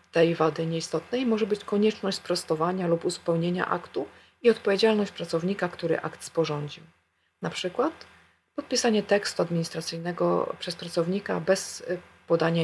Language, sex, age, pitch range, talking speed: Polish, female, 40-59, 160-195 Hz, 120 wpm